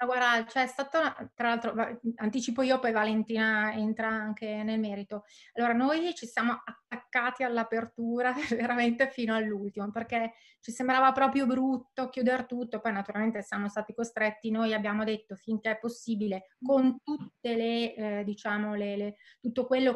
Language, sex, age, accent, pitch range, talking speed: Italian, female, 20-39, native, 215-240 Hz, 150 wpm